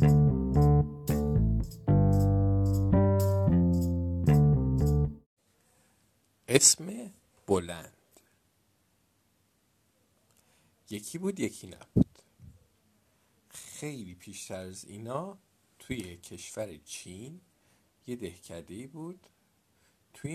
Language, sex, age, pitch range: Persian, male, 50-69, 95-150 Hz